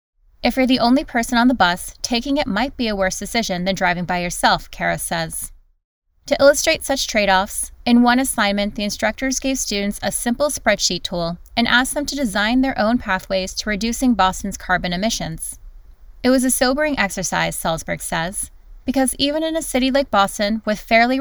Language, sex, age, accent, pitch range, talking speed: English, female, 20-39, American, 185-245 Hz, 185 wpm